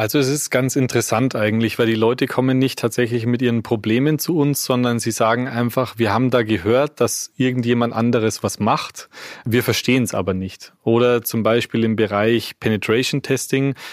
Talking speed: 180 wpm